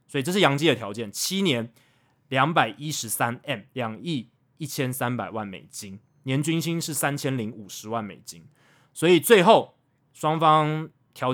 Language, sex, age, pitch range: Chinese, male, 20-39, 115-150 Hz